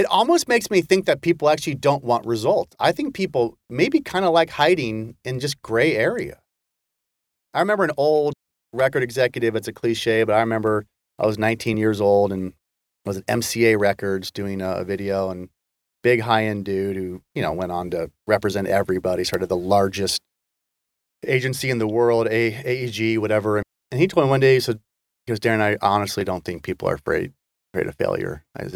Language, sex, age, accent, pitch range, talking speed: English, male, 30-49, American, 95-125 Hz, 185 wpm